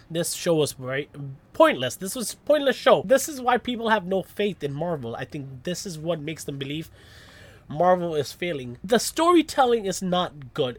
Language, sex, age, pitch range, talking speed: English, male, 20-39, 150-230 Hz, 195 wpm